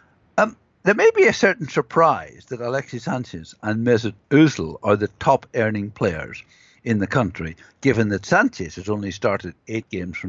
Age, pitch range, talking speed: 60-79, 105-135 Hz, 170 wpm